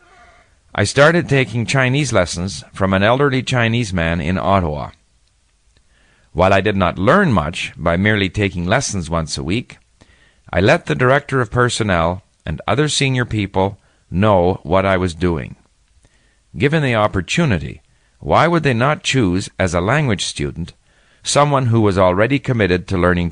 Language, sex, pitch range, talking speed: English, male, 85-120 Hz, 150 wpm